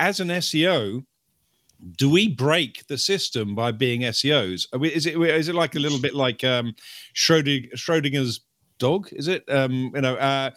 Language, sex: English, male